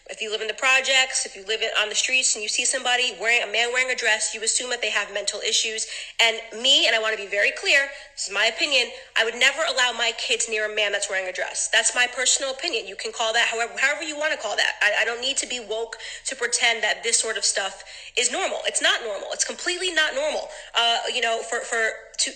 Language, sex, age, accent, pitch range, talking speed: English, female, 30-49, American, 225-285 Hz, 270 wpm